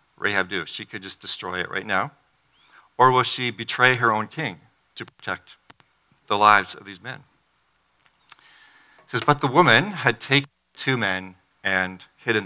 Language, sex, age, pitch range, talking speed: English, male, 40-59, 105-135 Hz, 165 wpm